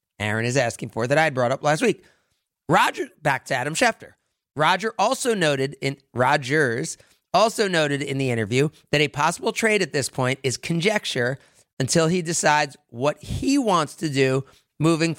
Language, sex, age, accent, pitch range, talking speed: English, male, 30-49, American, 135-210 Hz, 170 wpm